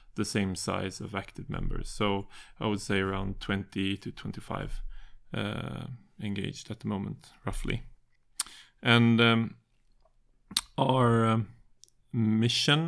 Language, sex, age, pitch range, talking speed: Danish, male, 30-49, 105-125 Hz, 115 wpm